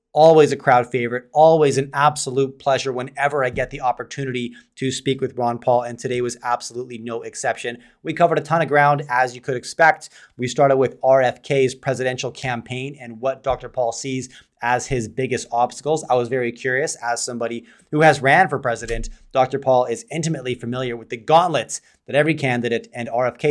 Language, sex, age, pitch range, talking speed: English, male, 30-49, 120-145 Hz, 185 wpm